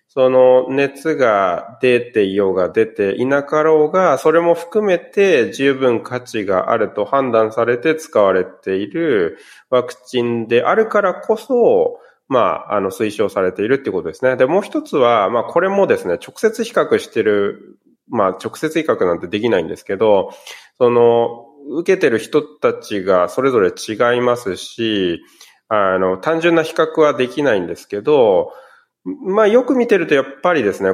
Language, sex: Japanese, male